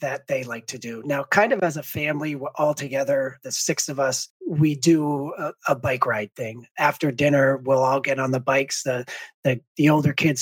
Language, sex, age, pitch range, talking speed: English, male, 40-59, 130-150 Hz, 220 wpm